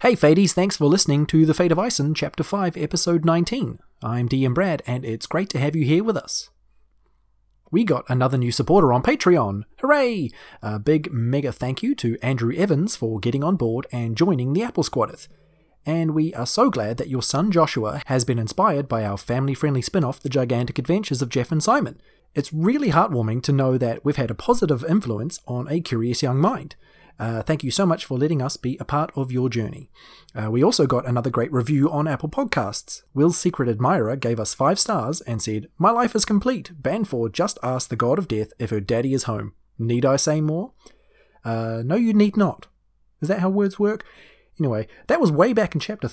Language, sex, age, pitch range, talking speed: English, male, 30-49, 115-165 Hz, 210 wpm